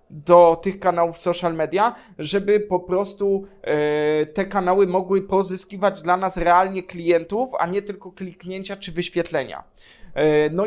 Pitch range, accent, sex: 170-205 Hz, native, male